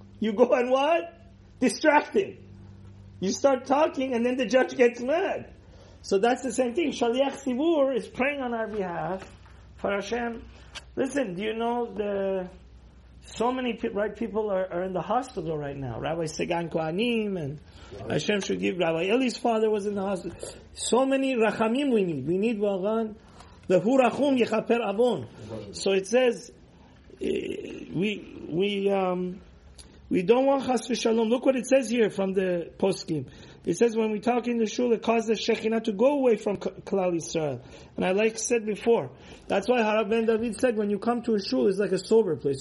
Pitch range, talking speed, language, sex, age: 185-240 Hz, 185 wpm, English, male, 40-59